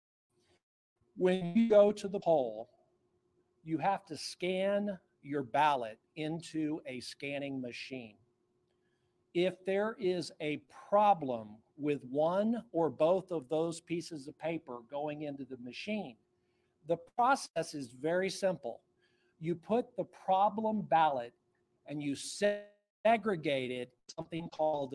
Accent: American